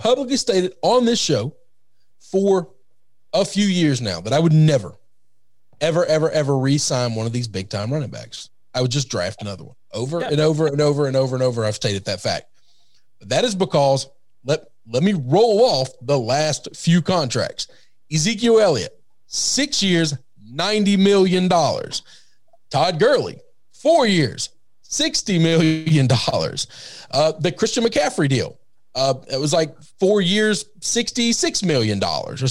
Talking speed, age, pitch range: 150 wpm, 40-59, 130-200 Hz